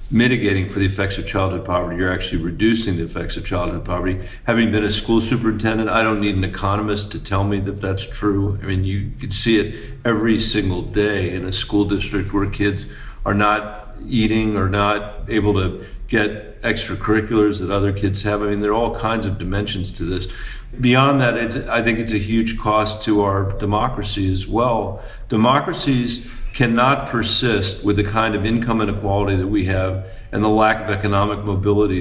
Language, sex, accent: English, male, American